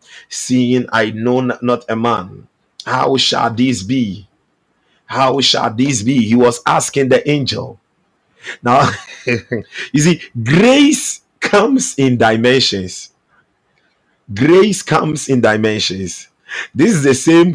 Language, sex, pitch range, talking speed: English, male, 110-145 Hz, 115 wpm